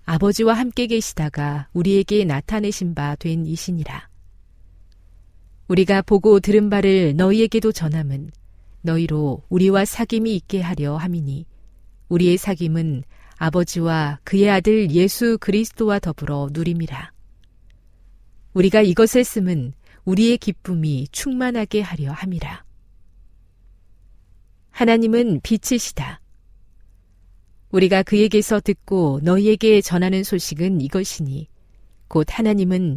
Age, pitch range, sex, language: 40-59, 135-205 Hz, female, Korean